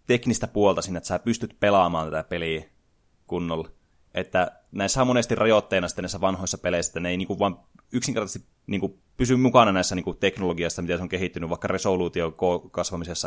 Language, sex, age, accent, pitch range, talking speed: Finnish, male, 20-39, native, 90-110 Hz, 175 wpm